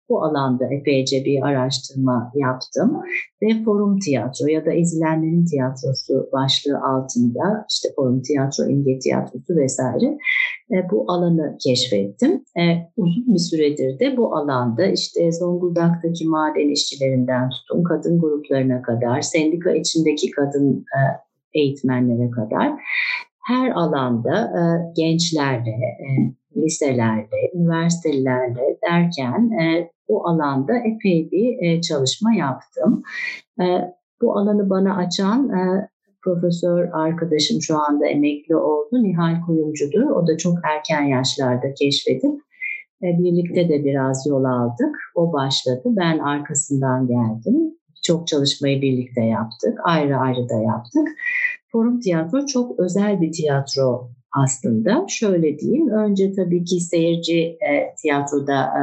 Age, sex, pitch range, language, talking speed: 60-79, female, 135-190 Hz, Turkish, 110 wpm